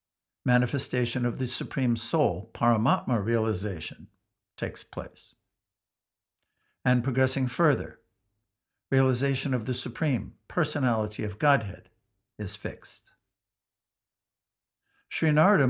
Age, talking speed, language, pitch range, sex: 60-79, 85 wpm, English, 105-135 Hz, male